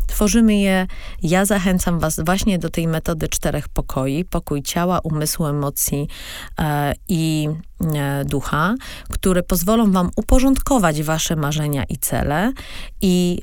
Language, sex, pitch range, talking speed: Polish, female, 155-190 Hz, 115 wpm